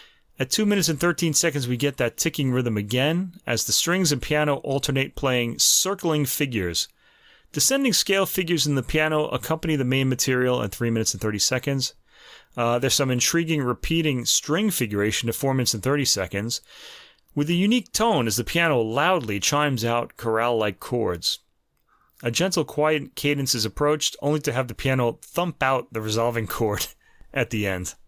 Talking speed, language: 175 wpm, English